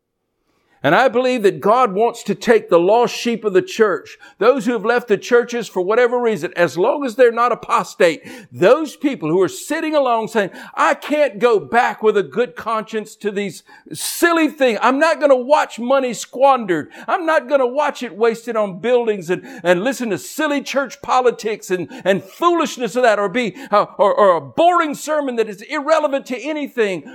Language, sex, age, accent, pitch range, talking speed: English, male, 60-79, American, 185-260 Hz, 195 wpm